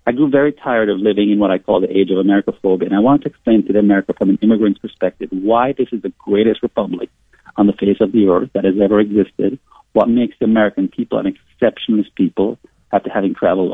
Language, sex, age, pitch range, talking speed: English, male, 50-69, 100-115 Hz, 230 wpm